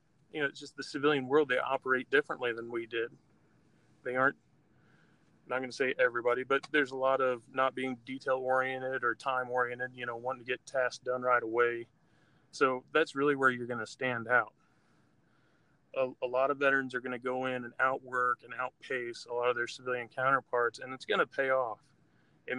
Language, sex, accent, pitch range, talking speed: English, male, American, 120-135 Hz, 200 wpm